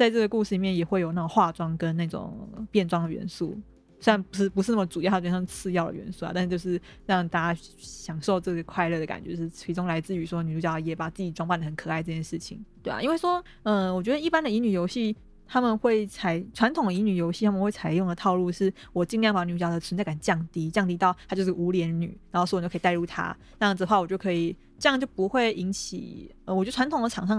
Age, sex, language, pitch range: 20-39, female, Chinese, 170-200 Hz